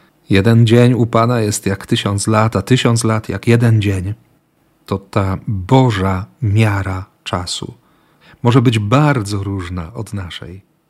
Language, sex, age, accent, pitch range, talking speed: Polish, male, 40-59, native, 100-130 Hz, 140 wpm